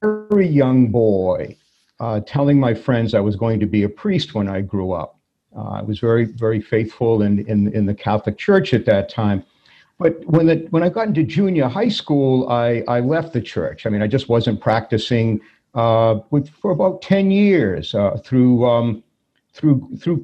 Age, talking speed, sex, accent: 50-69, 195 wpm, male, American